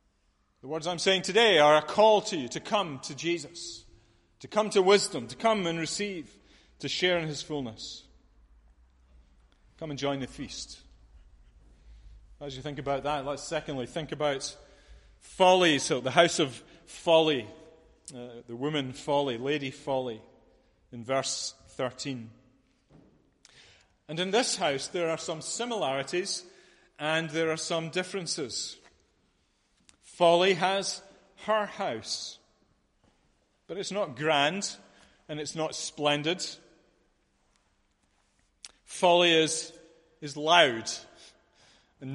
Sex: male